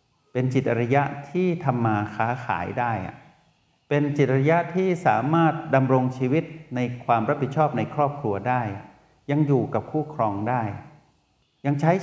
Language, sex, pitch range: Thai, male, 110-140 Hz